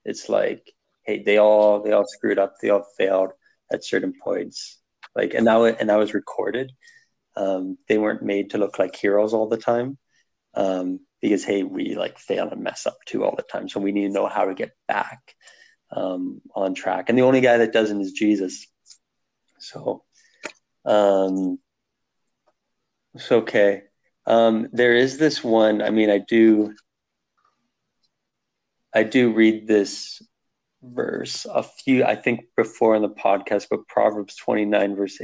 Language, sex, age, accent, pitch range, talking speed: English, male, 30-49, American, 100-125 Hz, 165 wpm